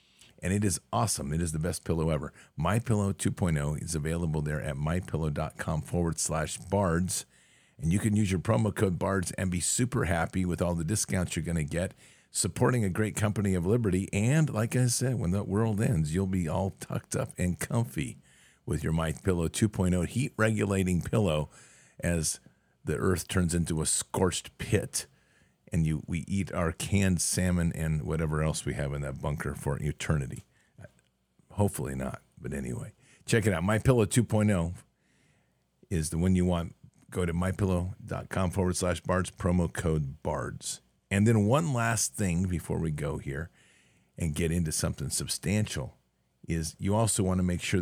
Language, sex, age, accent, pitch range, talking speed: English, male, 50-69, American, 80-105 Hz, 170 wpm